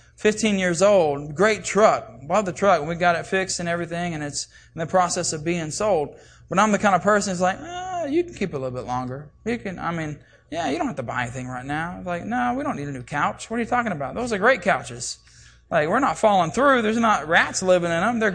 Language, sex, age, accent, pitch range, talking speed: English, male, 20-39, American, 150-210 Hz, 270 wpm